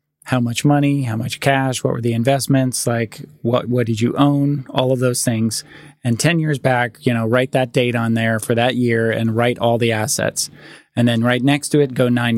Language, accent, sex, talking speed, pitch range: English, American, male, 230 wpm, 115-135 Hz